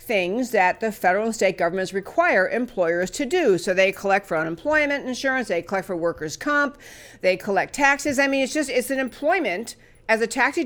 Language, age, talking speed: English, 50-69, 195 wpm